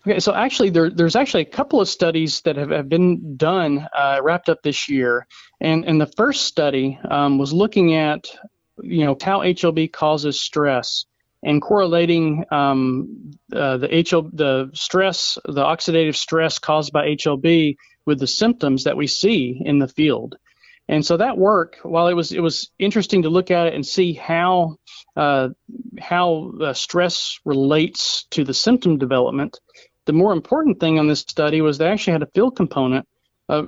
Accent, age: American, 40-59